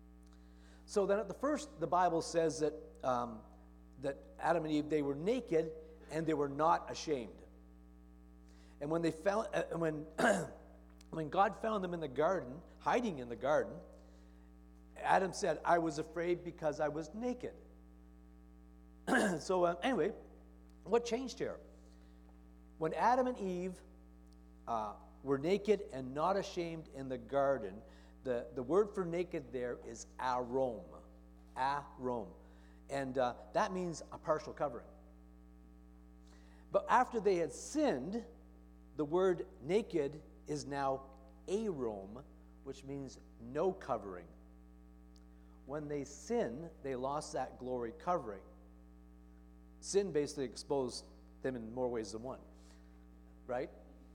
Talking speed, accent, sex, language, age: 130 wpm, American, male, English, 50-69